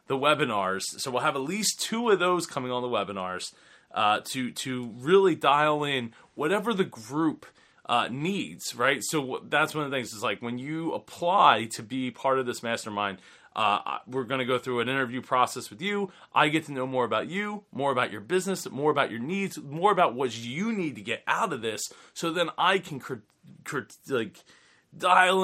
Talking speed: 210 wpm